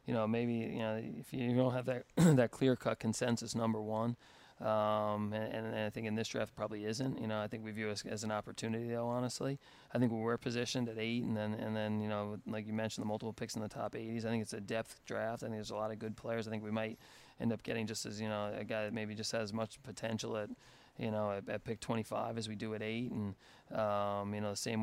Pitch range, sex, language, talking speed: 105-115 Hz, male, English, 275 wpm